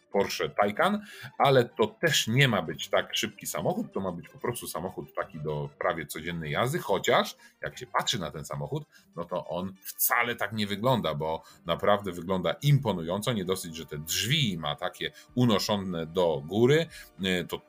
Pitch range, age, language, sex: 90-135 Hz, 40-59, Polish, male